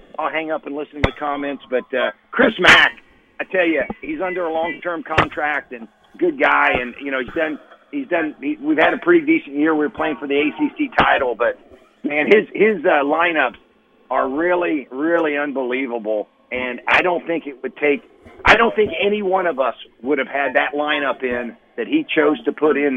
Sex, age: male, 50-69